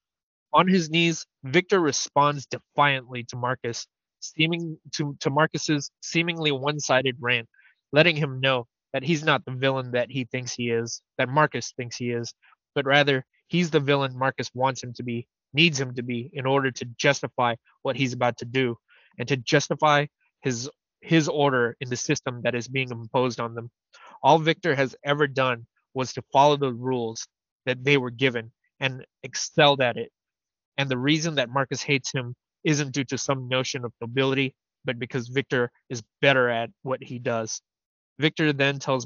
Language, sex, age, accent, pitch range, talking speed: English, male, 20-39, American, 125-150 Hz, 175 wpm